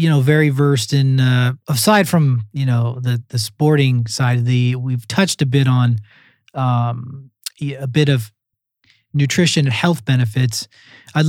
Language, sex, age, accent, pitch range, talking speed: English, male, 30-49, American, 130-165 Hz, 160 wpm